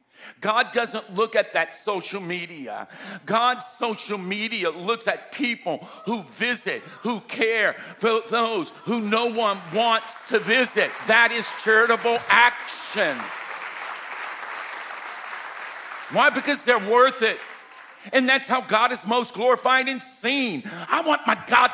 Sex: male